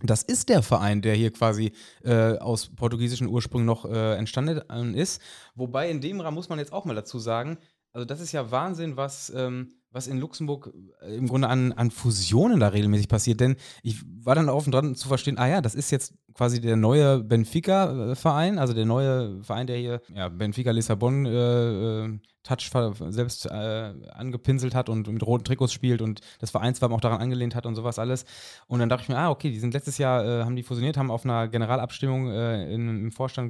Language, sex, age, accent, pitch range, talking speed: German, male, 20-39, German, 115-145 Hz, 205 wpm